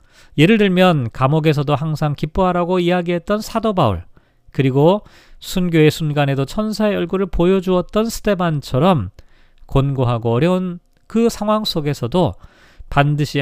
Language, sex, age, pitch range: Korean, male, 40-59, 135-190 Hz